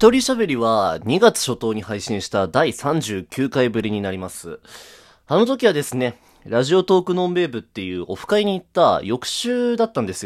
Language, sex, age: Japanese, male, 20-39